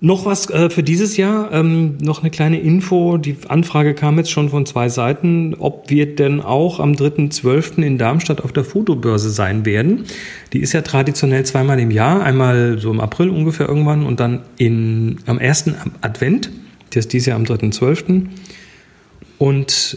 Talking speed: 170 wpm